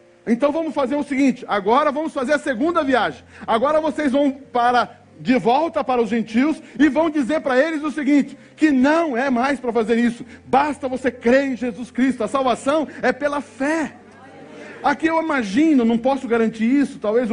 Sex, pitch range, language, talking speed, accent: male, 230-280 Hz, Portuguese, 185 wpm, Brazilian